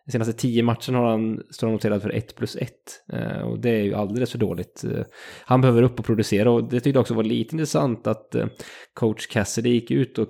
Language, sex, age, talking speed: English, male, 20-39, 210 wpm